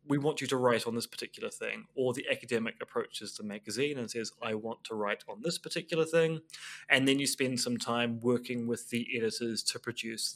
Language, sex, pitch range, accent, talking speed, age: English, male, 115-150 Hz, British, 215 wpm, 20-39